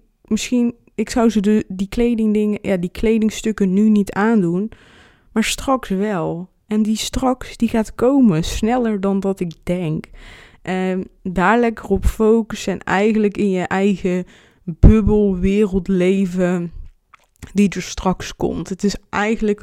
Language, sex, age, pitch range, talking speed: Dutch, female, 20-39, 185-215 Hz, 145 wpm